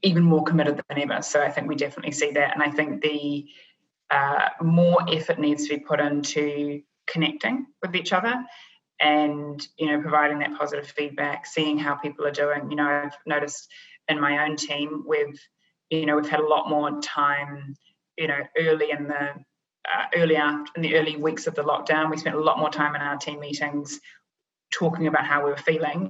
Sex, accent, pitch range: female, Australian, 145-160 Hz